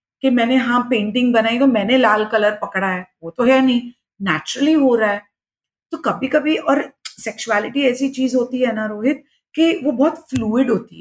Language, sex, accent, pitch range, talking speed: Hindi, female, native, 225-300 Hz, 190 wpm